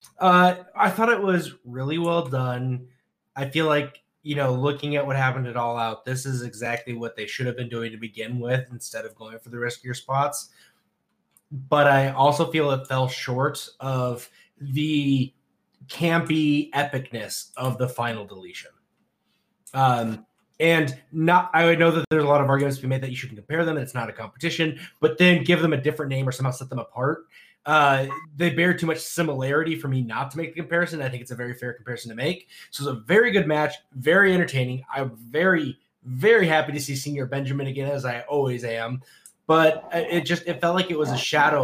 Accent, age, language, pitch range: American, 20-39, English, 125-160 Hz